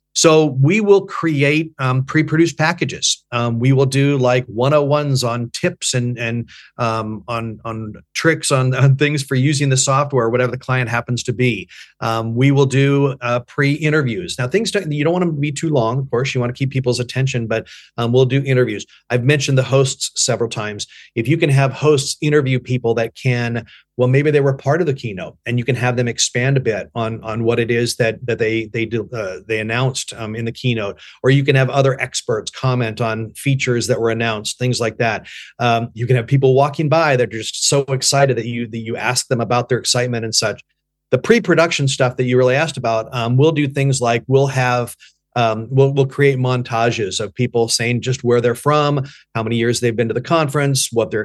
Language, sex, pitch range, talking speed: English, male, 115-140 Hz, 220 wpm